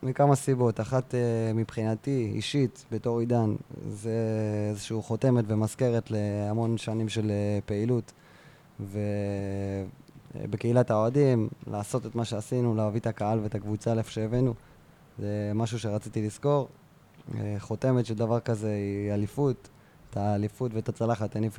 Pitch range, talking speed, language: 110-130 Hz, 120 wpm, Hebrew